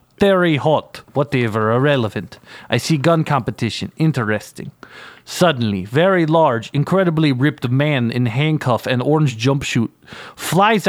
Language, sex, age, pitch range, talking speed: English, male, 30-49, 125-175 Hz, 120 wpm